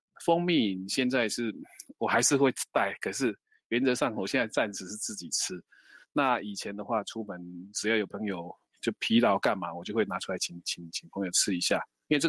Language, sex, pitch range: Chinese, male, 100-140 Hz